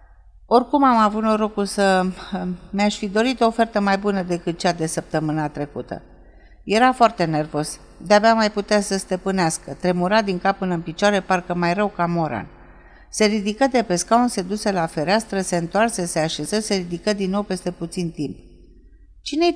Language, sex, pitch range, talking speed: Romanian, female, 175-225 Hz, 175 wpm